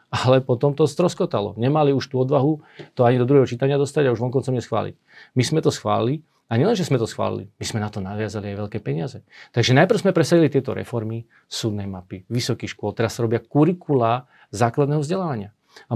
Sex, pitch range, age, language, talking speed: male, 115-145 Hz, 40-59, Slovak, 195 wpm